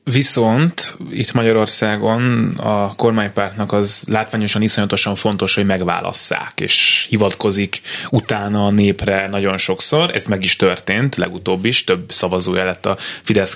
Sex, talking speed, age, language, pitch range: male, 130 wpm, 20-39, Hungarian, 100-115 Hz